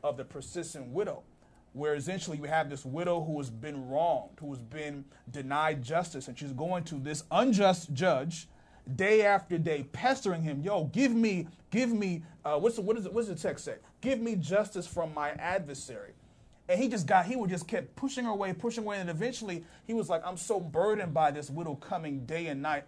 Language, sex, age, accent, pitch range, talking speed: English, male, 30-49, American, 145-195 Hz, 210 wpm